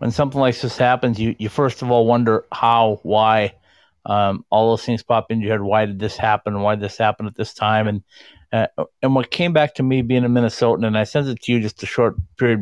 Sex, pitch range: male, 105-120 Hz